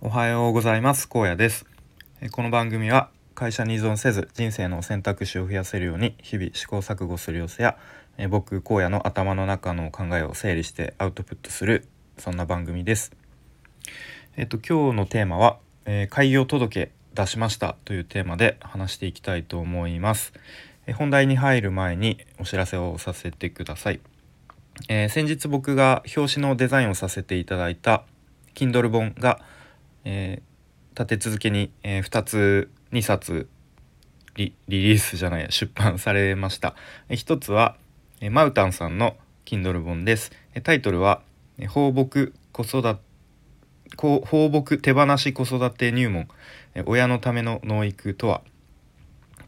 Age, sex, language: 20-39, male, Japanese